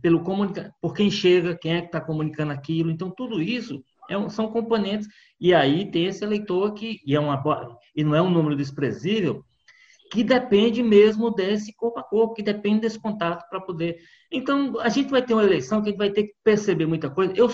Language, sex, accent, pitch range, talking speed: Portuguese, male, Brazilian, 150-210 Hz, 190 wpm